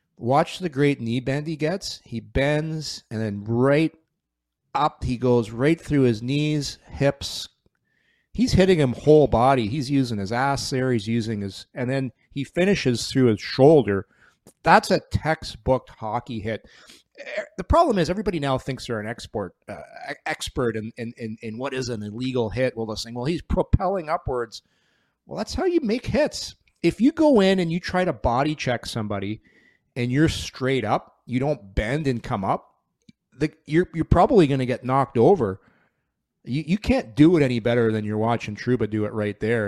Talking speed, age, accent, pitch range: 185 wpm, 40-59, American, 110-150 Hz